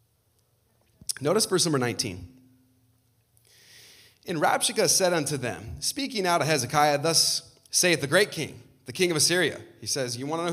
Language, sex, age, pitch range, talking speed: English, male, 20-39, 120-175 Hz, 160 wpm